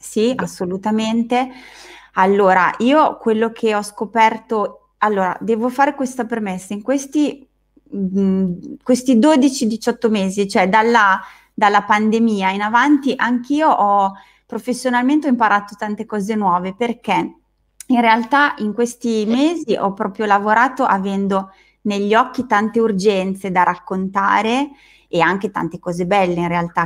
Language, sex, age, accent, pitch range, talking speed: Italian, female, 20-39, native, 190-235 Hz, 125 wpm